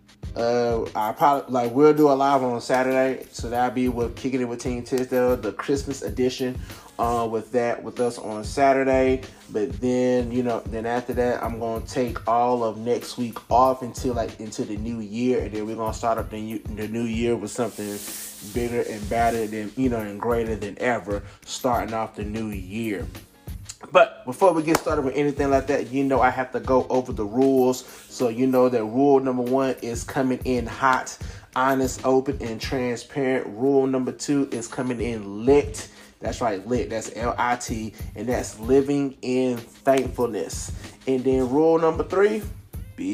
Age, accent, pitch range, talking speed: 20-39, American, 110-130 Hz, 185 wpm